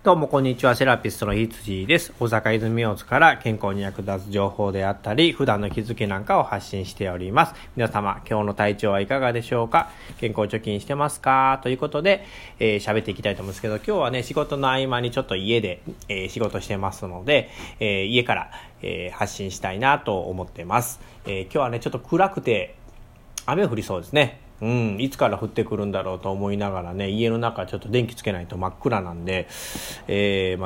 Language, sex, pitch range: Japanese, male, 95-125 Hz